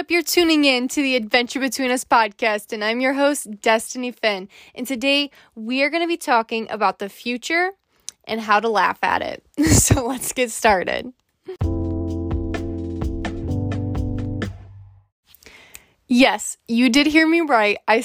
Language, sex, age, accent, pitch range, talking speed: English, female, 20-39, American, 225-280 Hz, 145 wpm